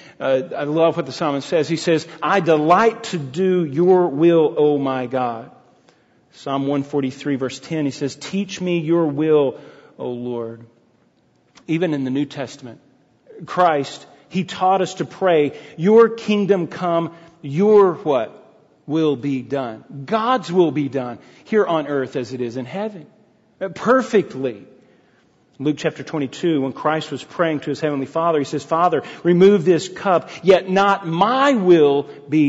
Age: 40-59